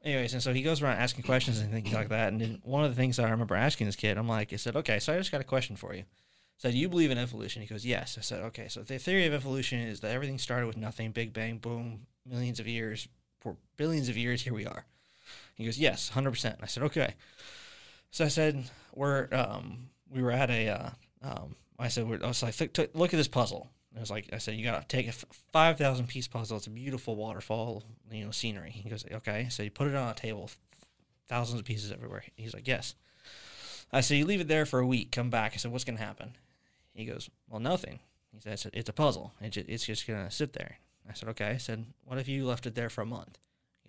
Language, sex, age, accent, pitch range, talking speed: English, male, 20-39, American, 110-135 Hz, 255 wpm